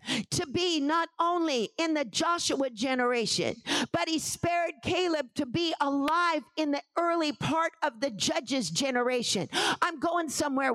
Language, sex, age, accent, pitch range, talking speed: English, female, 50-69, American, 305-375 Hz, 145 wpm